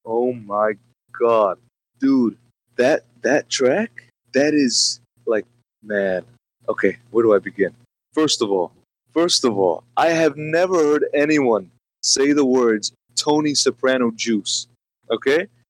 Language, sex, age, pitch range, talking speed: English, male, 30-49, 115-155 Hz, 130 wpm